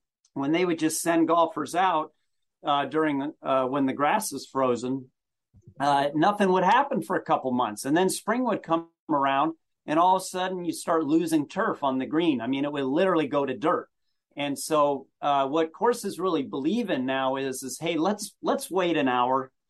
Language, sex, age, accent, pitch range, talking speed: English, male, 40-59, American, 130-165 Hz, 200 wpm